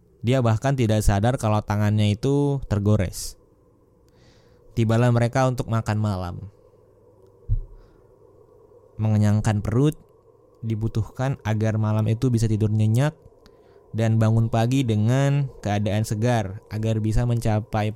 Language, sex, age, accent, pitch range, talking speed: Indonesian, male, 20-39, native, 110-145 Hz, 105 wpm